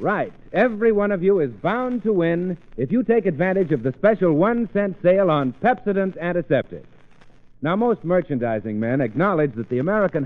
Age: 60-79